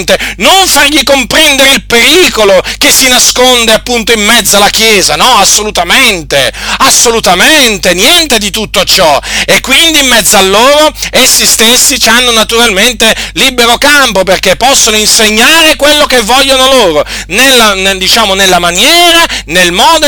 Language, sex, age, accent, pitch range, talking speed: Italian, male, 40-59, native, 215-280 Hz, 130 wpm